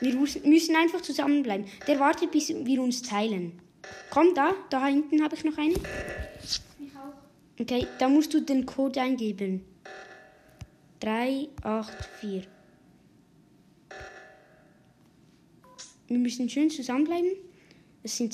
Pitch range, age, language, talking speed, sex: 235-305 Hz, 20-39, Spanish, 120 wpm, female